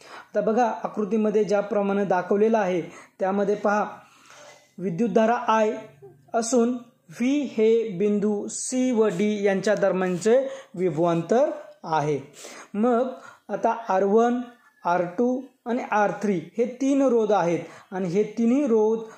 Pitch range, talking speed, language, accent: 190-240 Hz, 110 wpm, Marathi, native